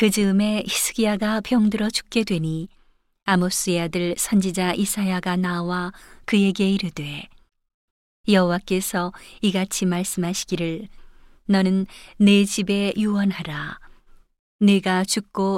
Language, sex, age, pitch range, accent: Korean, female, 40-59, 180-205 Hz, native